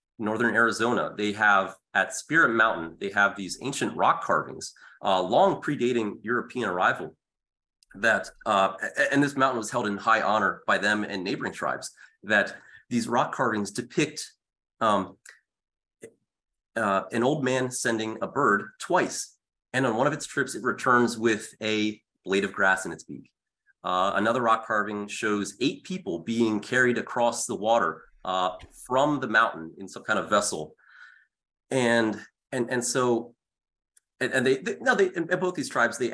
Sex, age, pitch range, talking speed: male, 30-49, 100-125 Hz, 165 wpm